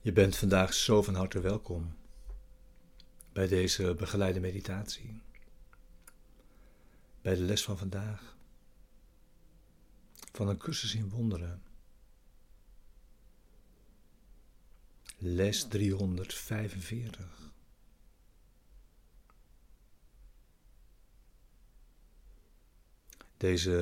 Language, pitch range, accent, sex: Dutch, 90-105 Hz, Dutch, male